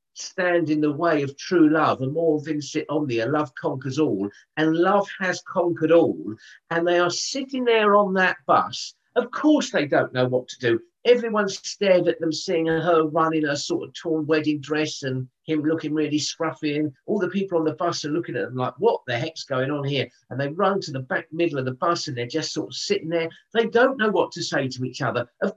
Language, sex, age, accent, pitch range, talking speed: English, male, 50-69, British, 145-195 Hz, 235 wpm